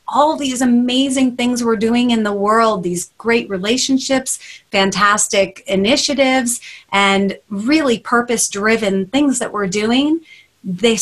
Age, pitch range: 30-49, 195-260 Hz